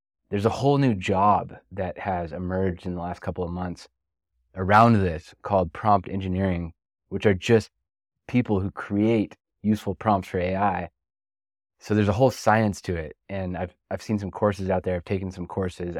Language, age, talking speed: English, 20-39, 180 wpm